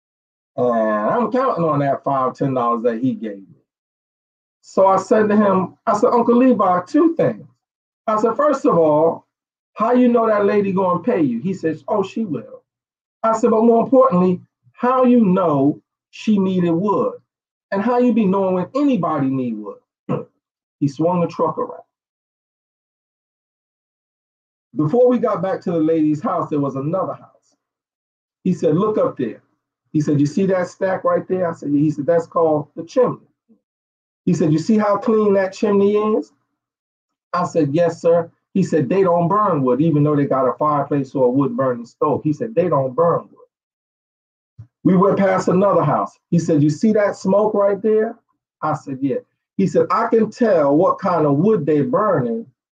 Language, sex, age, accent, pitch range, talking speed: English, male, 40-59, American, 145-215 Hz, 190 wpm